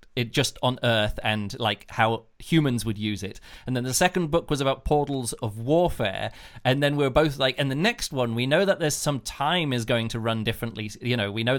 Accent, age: British, 30-49